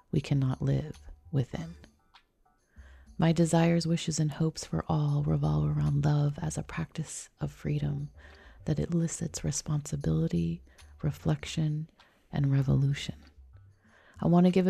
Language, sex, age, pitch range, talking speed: English, female, 30-49, 135-170 Hz, 115 wpm